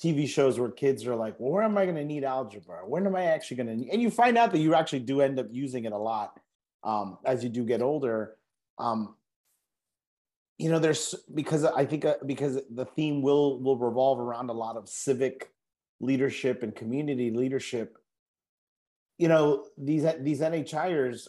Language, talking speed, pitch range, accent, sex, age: English, 190 wpm, 120-150 Hz, American, male, 30-49